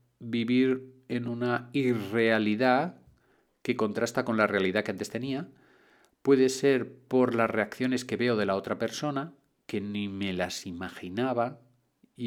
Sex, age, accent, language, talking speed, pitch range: male, 40-59, Spanish, Spanish, 140 wpm, 105-125 Hz